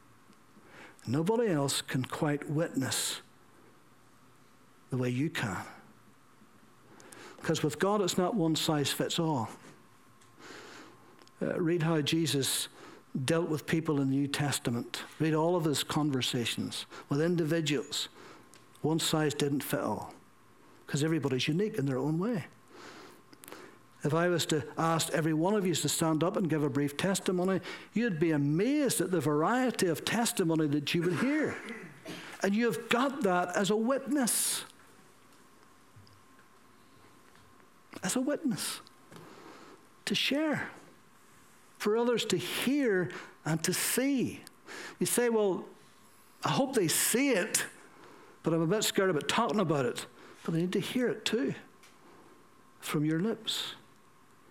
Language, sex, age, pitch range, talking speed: English, male, 60-79, 150-205 Hz, 135 wpm